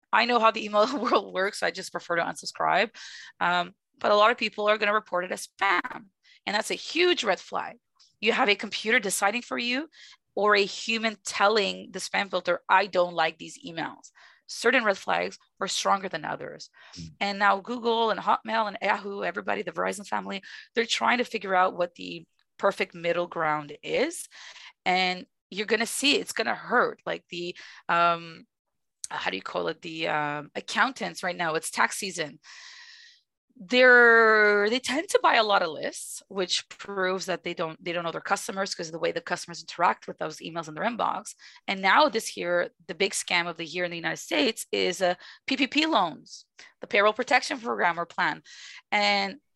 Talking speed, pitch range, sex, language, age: 195 wpm, 175-225 Hz, female, English, 30-49